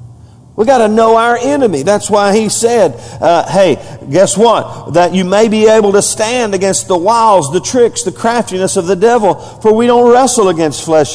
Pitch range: 155-220 Hz